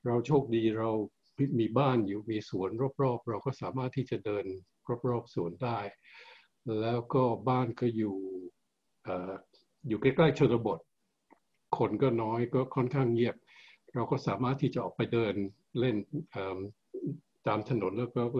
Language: Thai